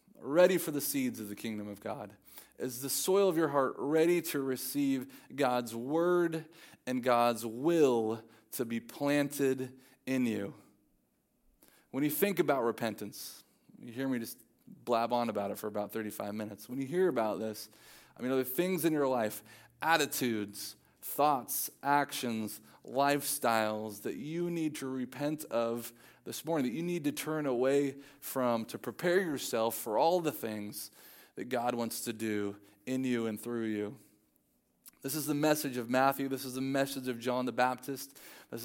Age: 30-49